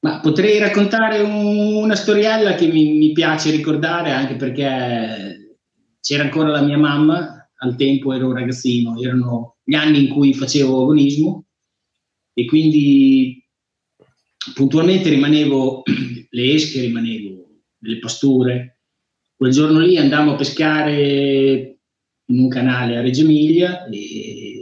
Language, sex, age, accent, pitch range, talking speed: Italian, male, 30-49, native, 125-150 Hz, 125 wpm